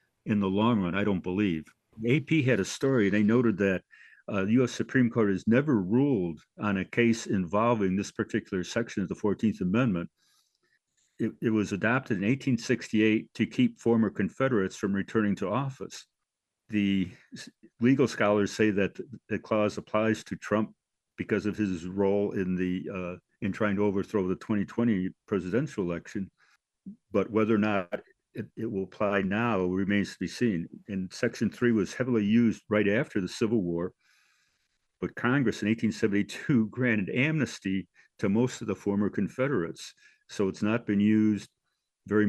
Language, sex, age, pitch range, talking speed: English, male, 60-79, 95-115 Hz, 160 wpm